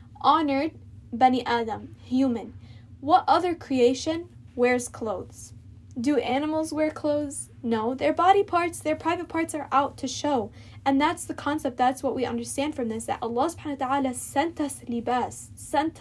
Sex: female